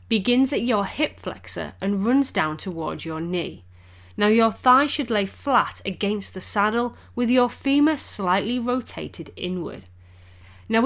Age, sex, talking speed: 30-49, female, 150 wpm